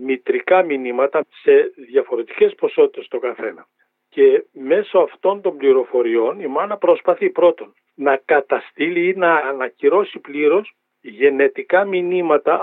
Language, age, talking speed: Greek, 50-69, 115 wpm